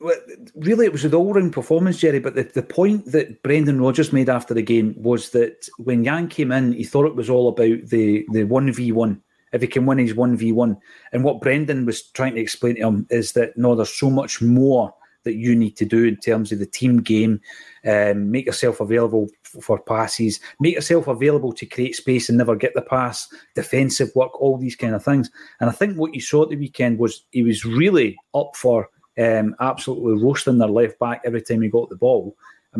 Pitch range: 115-140 Hz